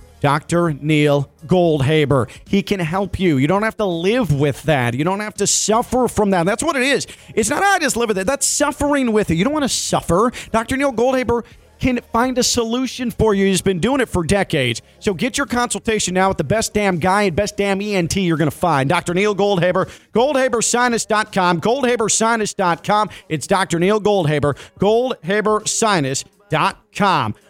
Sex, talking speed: male, 185 wpm